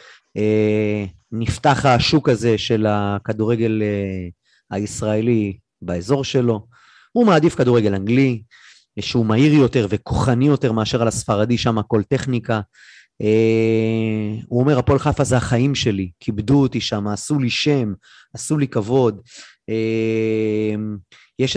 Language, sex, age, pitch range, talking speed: Hebrew, male, 30-49, 110-135 Hz, 130 wpm